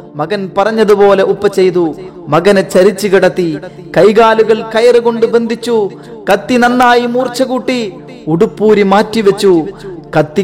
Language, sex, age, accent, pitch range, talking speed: Malayalam, male, 30-49, native, 175-235 Hz, 100 wpm